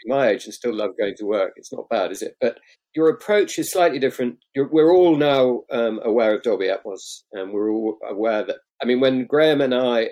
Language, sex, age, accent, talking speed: English, male, 50-69, British, 230 wpm